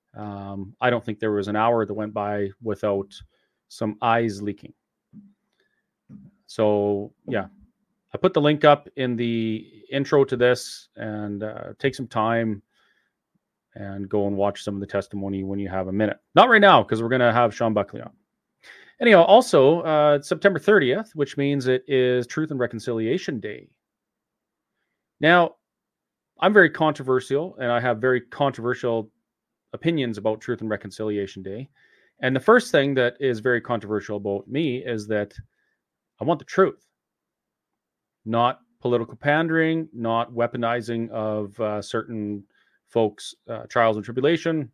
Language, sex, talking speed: English, male, 150 wpm